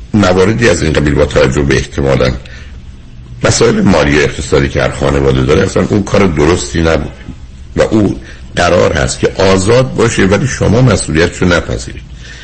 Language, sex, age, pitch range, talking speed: Persian, male, 60-79, 65-85 Hz, 155 wpm